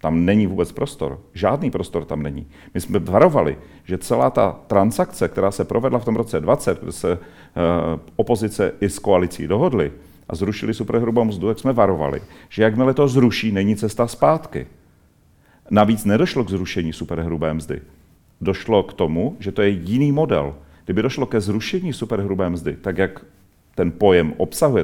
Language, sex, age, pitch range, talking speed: Czech, male, 40-59, 85-115 Hz, 165 wpm